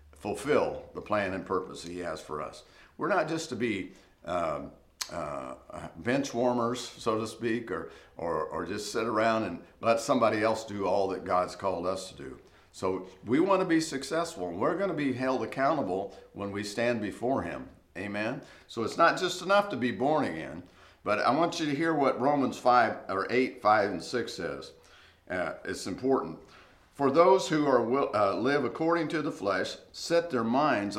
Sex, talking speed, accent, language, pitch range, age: male, 185 wpm, American, English, 95-140 Hz, 50-69